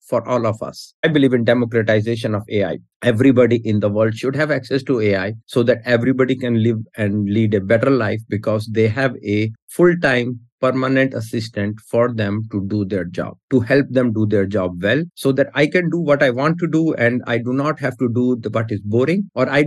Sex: male